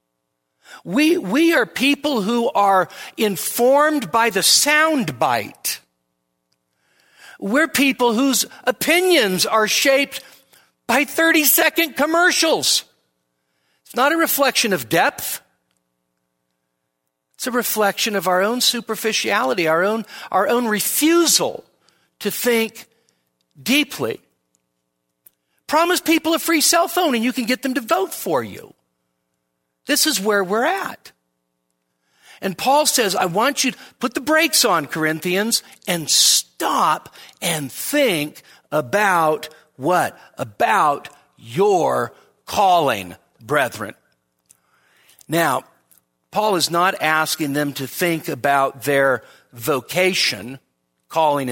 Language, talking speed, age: English, 110 wpm, 50-69